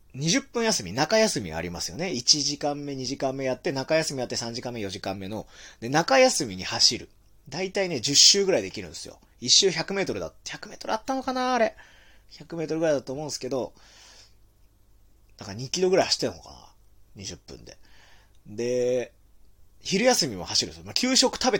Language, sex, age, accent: Japanese, male, 30-49, native